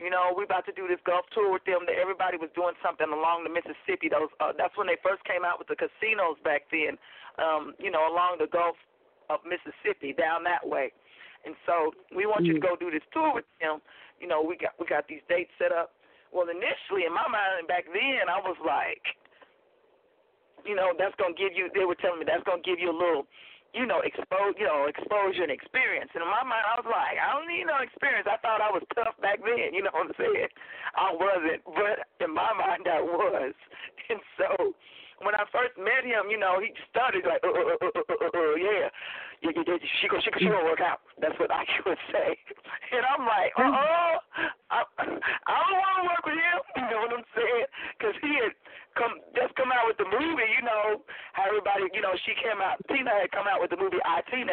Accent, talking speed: American, 230 wpm